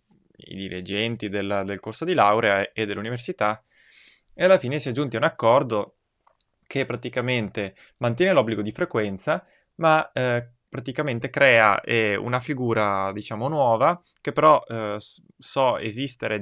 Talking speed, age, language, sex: 140 wpm, 20-39, Italian, male